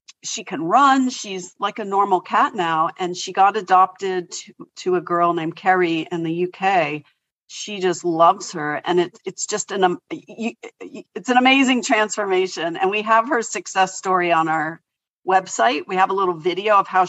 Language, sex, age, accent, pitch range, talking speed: English, female, 40-59, American, 165-200 Hz, 175 wpm